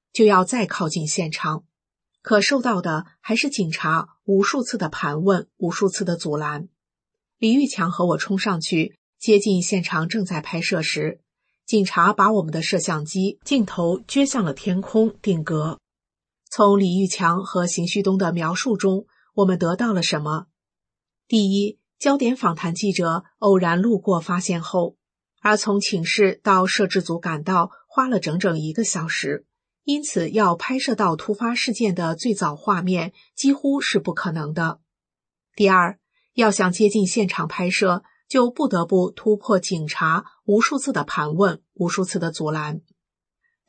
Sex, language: female, Chinese